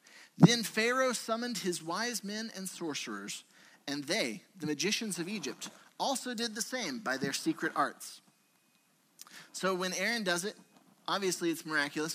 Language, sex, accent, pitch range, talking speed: English, male, American, 150-220 Hz, 150 wpm